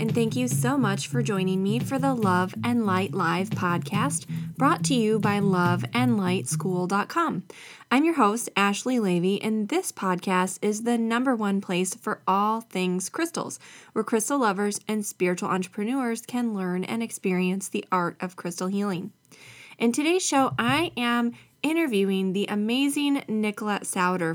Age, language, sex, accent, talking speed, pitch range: 20-39, English, female, American, 155 wpm, 185-240 Hz